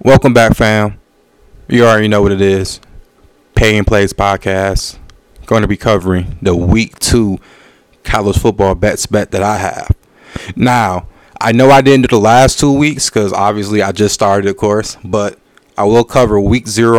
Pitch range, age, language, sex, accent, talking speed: 100-120 Hz, 20-39, English, male, American, 175 wpm